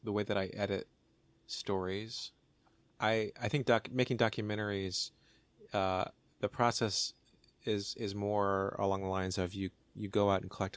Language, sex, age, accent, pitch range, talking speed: English, male, 30-49, American, 95-110 Hz, 155 wpm